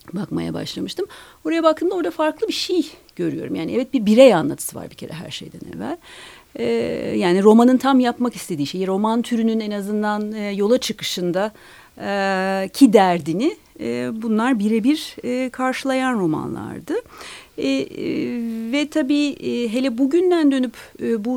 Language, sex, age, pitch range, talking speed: Turkish, female, 40-59, 215-290 Hz, 125 wpm